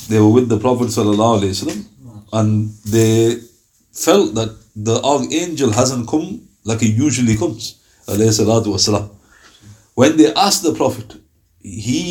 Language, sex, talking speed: English, male, 125 wpm